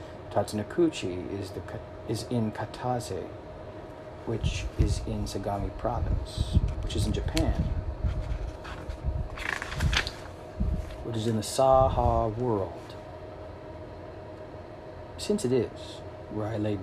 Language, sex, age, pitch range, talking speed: English, male, 40-59, 100-110 Hz, 95 wpm